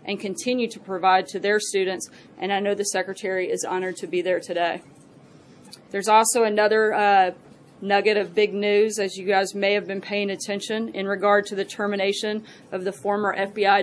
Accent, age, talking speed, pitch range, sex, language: American, 30-49, 185 wpm, 195-215 Hz, female, English